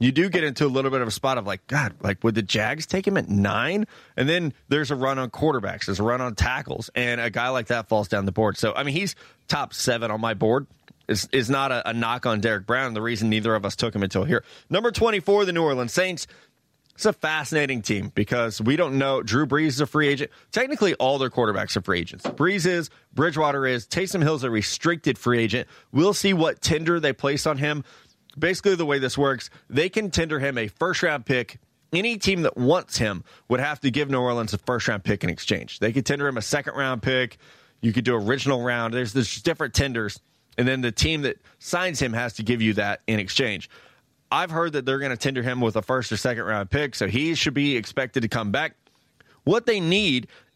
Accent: American